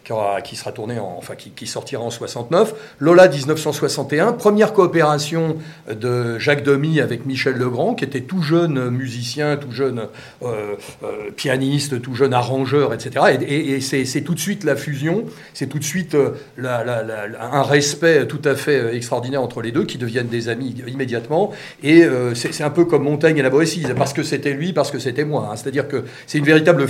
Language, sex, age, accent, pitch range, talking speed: French, male, 40-59, French, 130-165 Hz, 200 wpm